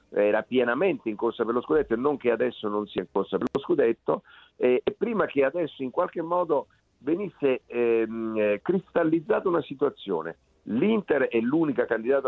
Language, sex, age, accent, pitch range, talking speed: Italian, male, 50-69, native, 125-165 Hz, 165 wpm